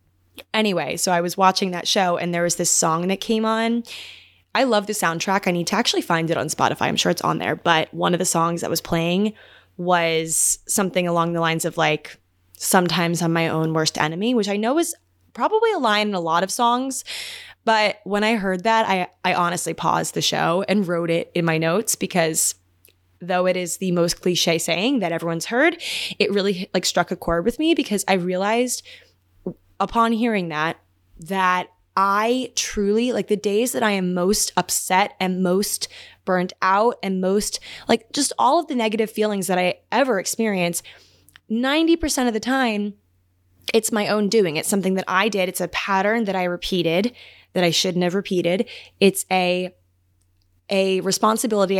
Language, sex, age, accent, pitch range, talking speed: English, female, 20-39, American, 170-210 Hz, 190 wpm